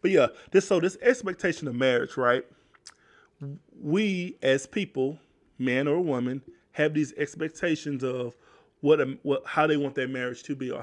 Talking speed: 160 wpm